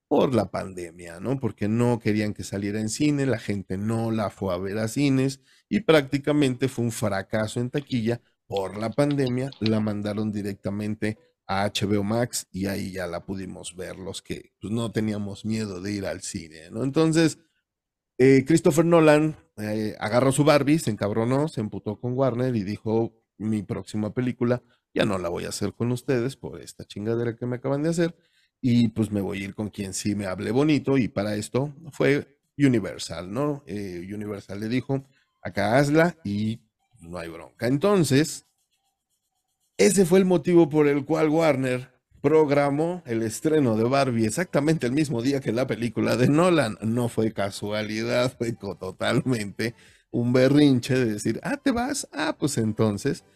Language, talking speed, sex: Spanish, 175 wpm, male